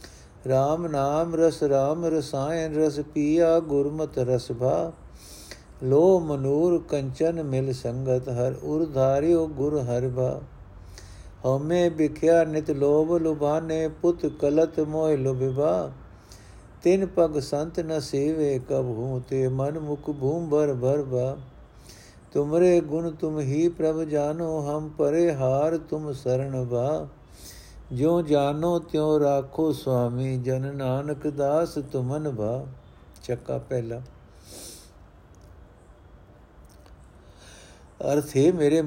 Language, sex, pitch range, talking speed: Punjabi, male, 125-155 Hz, 100 wpm